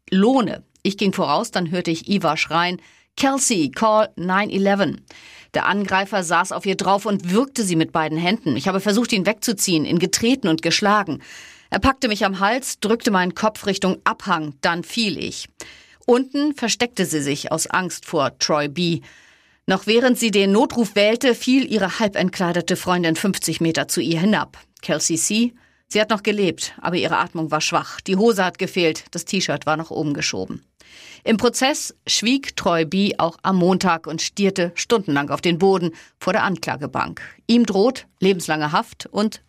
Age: 40-59